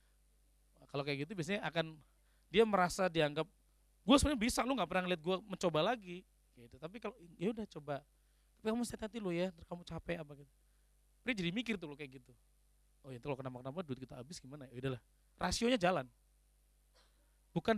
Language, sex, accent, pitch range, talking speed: Indonesian, male, native, 115-190 Hz, 185 wpm